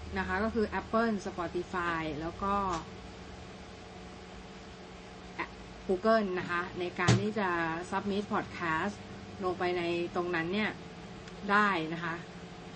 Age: 20-39